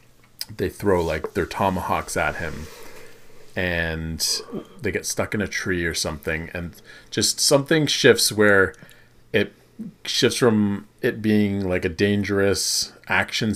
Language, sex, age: English, male, 40-59